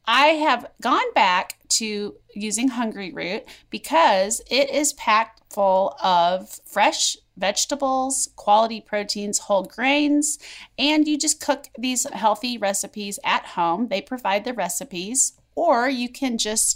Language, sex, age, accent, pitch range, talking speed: English, female, 30-49, American, 195-280 Hz, 135 wpm